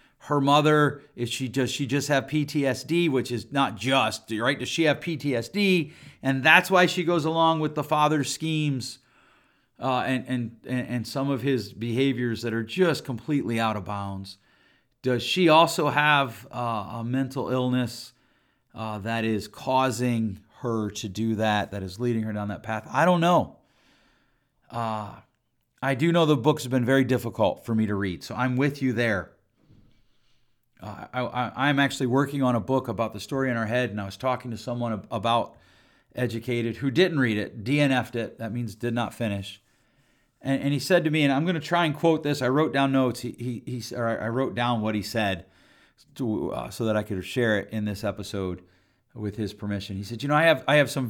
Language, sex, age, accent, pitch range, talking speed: English, male, 40-59, American, 110-140 Hz, 200 wpm